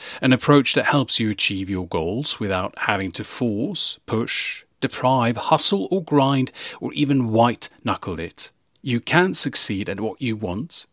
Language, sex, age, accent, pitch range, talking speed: English, male, 40-59, British, 105-145 Hz, 155 wpm